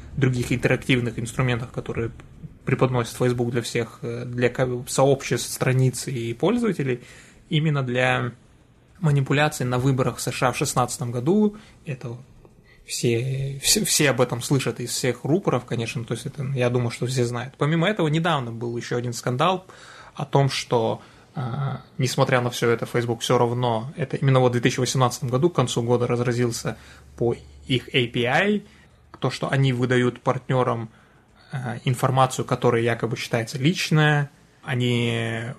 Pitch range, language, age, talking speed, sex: 120-140 Hz, Russian, 20-39, 140 wpm, male